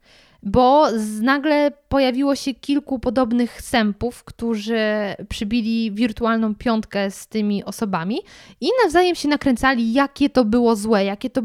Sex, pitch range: female, 210-280 Hz